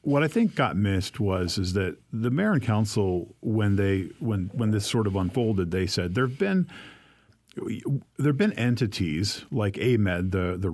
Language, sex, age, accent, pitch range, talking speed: English, male, 50-69, American, 95-120 Hz, 180 wpm